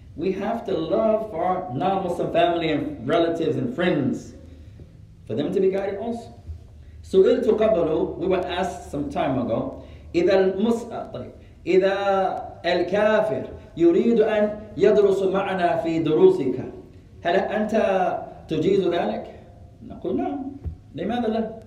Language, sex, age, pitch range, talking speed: English, male, 30-49, 145-210 Hz, 100 wpm